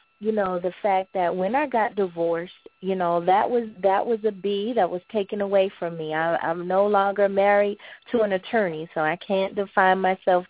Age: 20-39